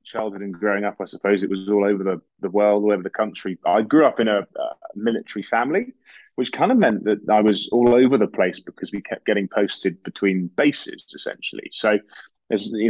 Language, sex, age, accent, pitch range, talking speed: English, male, 20-39, British, 95-120 Hz, 220 wpm